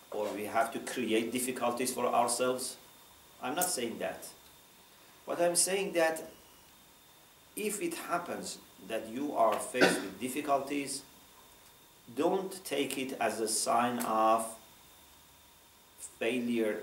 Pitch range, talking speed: 115-160 Hz, 120 wpm